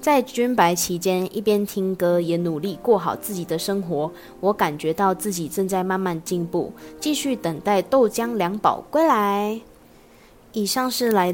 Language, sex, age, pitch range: Chinese, female, 20-39, 175-215 Hz